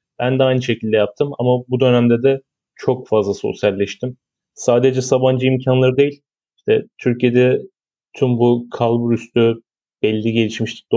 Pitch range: 120-135 Hz